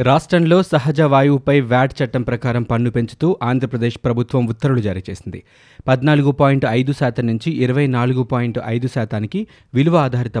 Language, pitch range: Telugu, 115-140 Hz